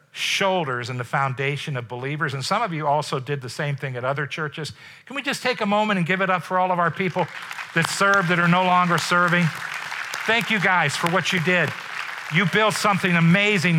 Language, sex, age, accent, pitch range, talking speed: English, male, 50-69, American, 125-175 Hz, 220 wpm